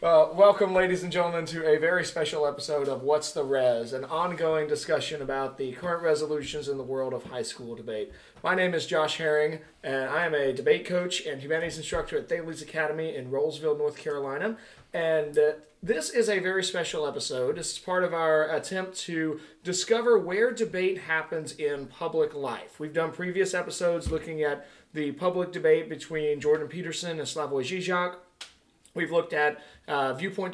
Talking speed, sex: 180 wpm, male